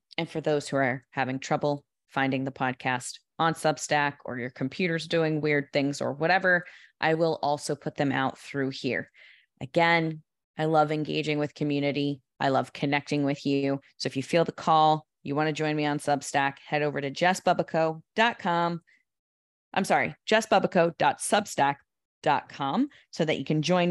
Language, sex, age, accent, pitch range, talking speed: English, female, 20-39, American, 140-170 Hz, 160 wpm